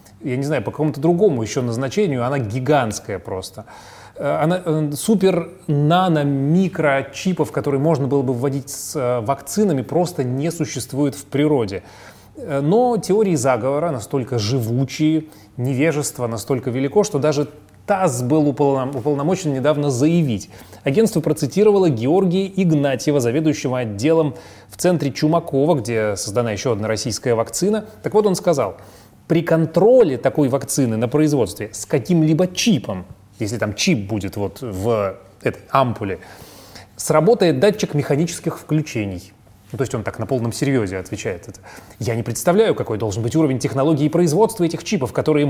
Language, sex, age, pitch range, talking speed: Russian, male, 30-49, 120-165 Hz, 135 wpm